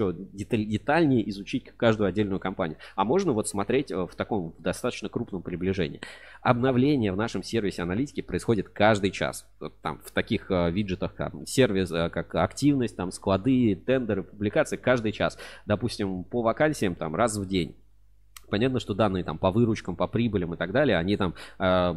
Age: 20-39